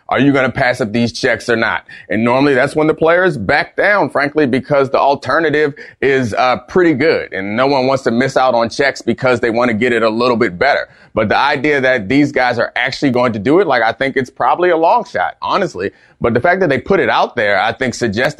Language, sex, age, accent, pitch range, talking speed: English, male, 30-49, American, 115-135 Hz, 255 wpm